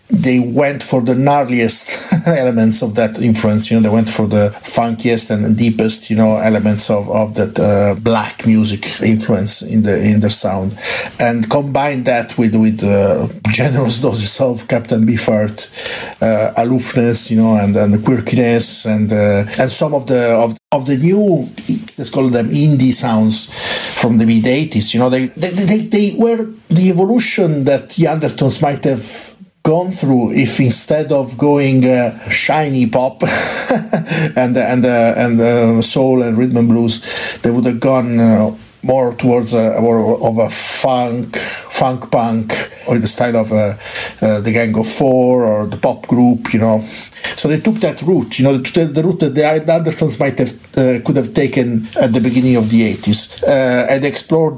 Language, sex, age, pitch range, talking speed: English, male, 50-69, 110-140 Hz, 180 wpm